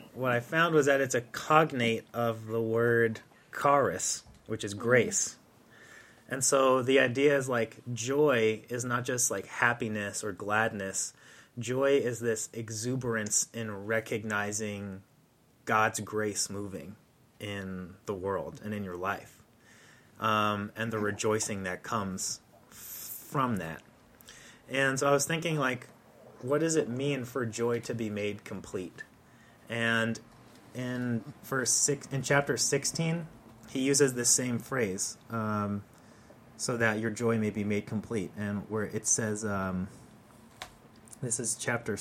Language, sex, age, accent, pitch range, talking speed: English, male, 30-49, American, 105-125 Hz, 140 wpm